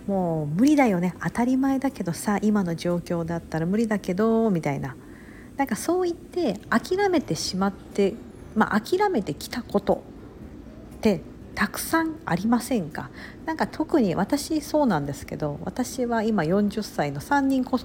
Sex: female